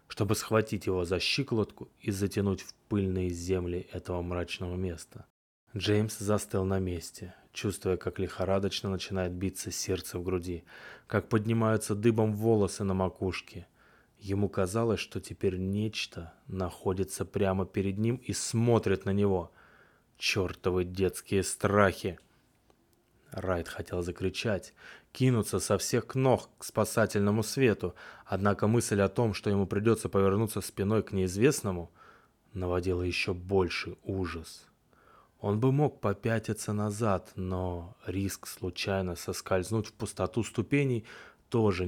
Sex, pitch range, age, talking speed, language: male, 90-110 Hz, 20-39, 120 wpm, Russian